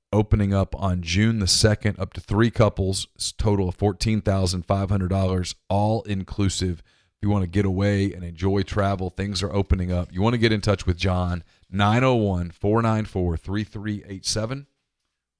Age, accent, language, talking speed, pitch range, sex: 40-59, American, English, 145 wpm, 90-105 Hz, male